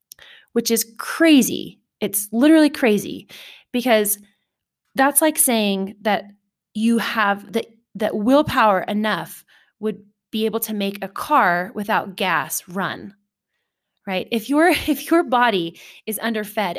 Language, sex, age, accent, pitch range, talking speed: English, female, 20-39, American, 195-235 Hz, 125 wpm